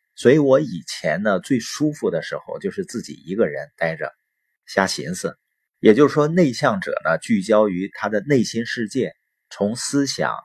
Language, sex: Chinese, male